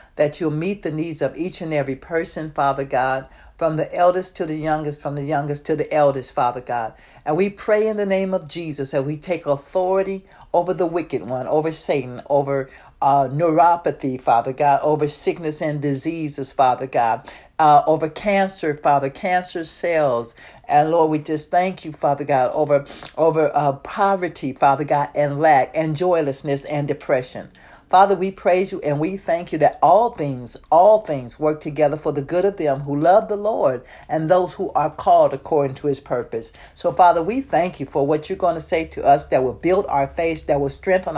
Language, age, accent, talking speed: English, 60-79, American, 195 wpm